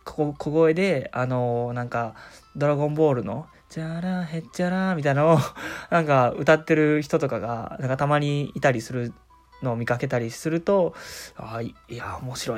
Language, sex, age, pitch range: Japanese, male, 20-39, 125-160 Hz